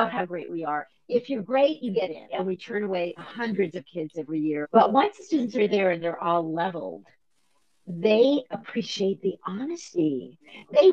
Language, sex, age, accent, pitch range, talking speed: English, female, 50-69, American, 165-240 Hz, 185 wpm